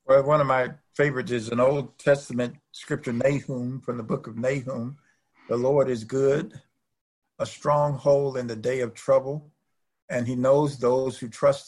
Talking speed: 170 wpm